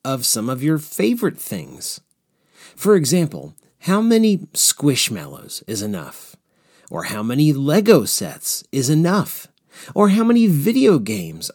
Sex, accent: male, American